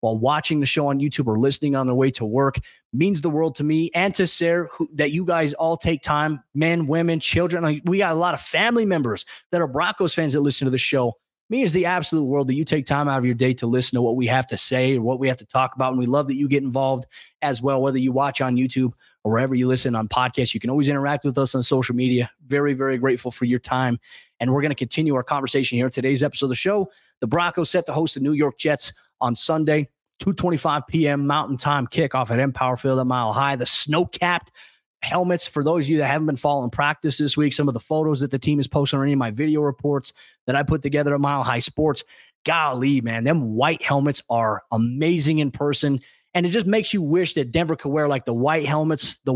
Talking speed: 250 wpm